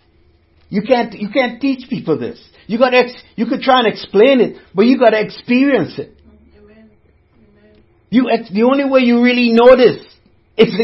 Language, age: English, 60-79